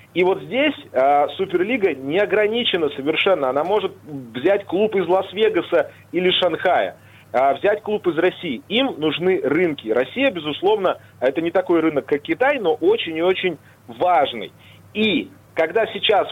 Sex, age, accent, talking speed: male, 30-49, native, 145 wpm